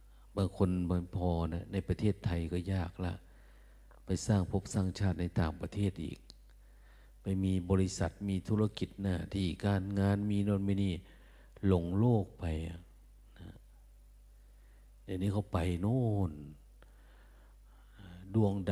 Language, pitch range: Thai, 80-100 Hz